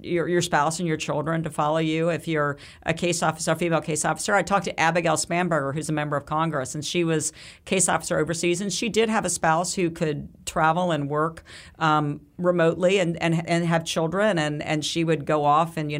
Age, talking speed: 50-69, 225 wpm